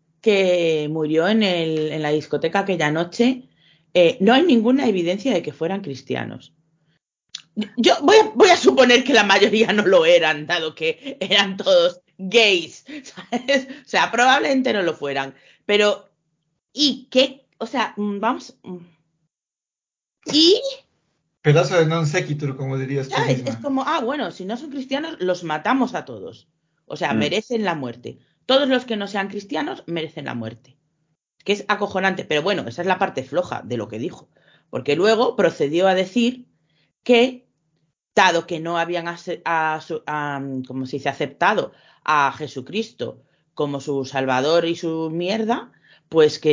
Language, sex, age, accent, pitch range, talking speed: Spanish, female, 30-49, Spanish, 155-230 Hz, 160 wpm